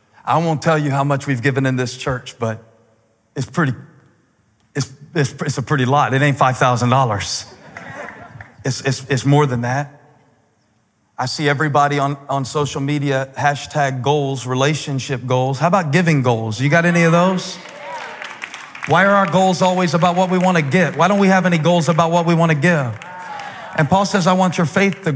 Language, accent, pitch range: English, American, 130-170 Hz